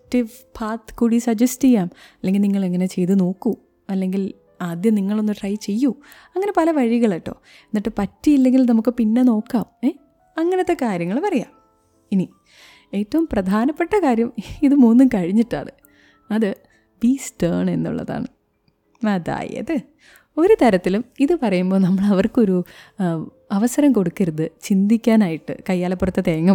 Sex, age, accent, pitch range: female, 20-39, native, 190-260 Hz